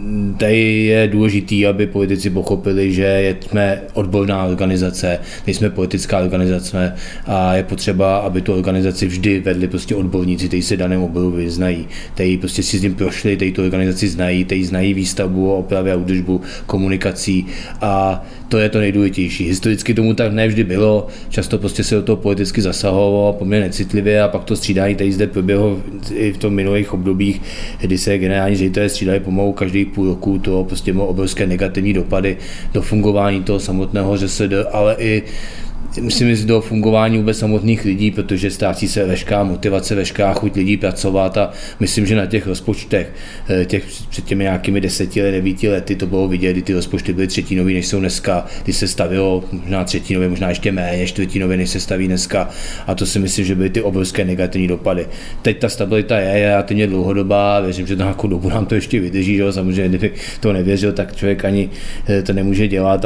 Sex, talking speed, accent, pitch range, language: male, 180 wpm, native, 95-105 Hz, Czech